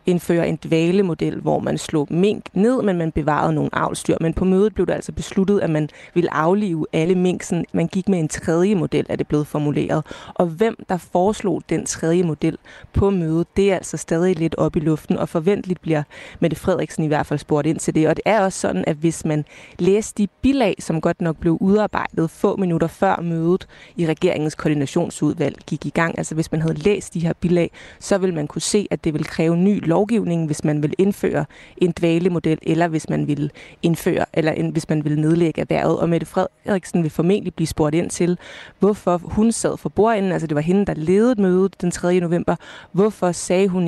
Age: 20-39